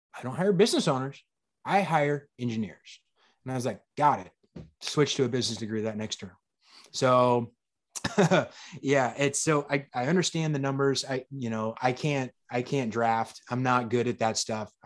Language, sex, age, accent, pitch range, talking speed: English, male, 20-39, American, 115-135 Hz, 180 wpm